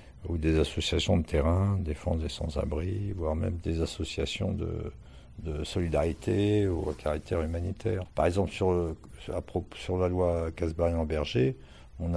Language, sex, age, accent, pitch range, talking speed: French, male, 60-79, French, 80-95 Hz, 150 wpm